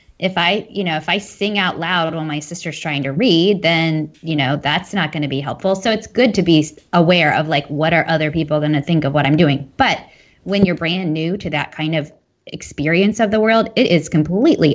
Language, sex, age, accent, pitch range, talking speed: English, female, 20-39, American, 160-215 Hz, 240 wpm